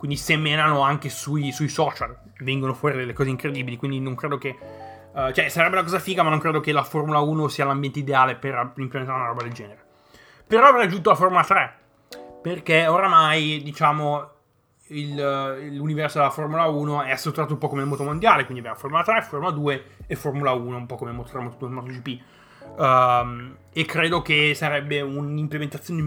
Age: 20-39